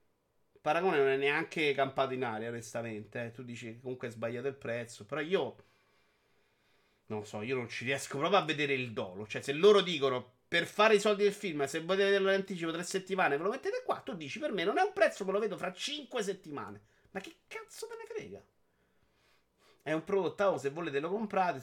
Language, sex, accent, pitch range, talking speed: Italian, male, native, 125-195 Hz, 220 wpm